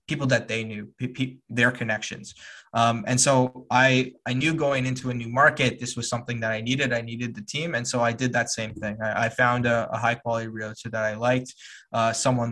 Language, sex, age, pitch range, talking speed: English, male, 20-39, 110-125 Hz, 235 wpm